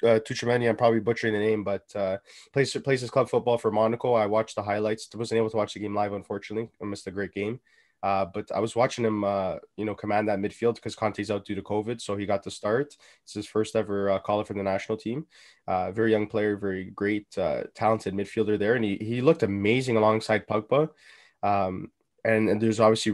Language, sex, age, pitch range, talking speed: English, male, 20-39, 100-110 Hz, 230 wpm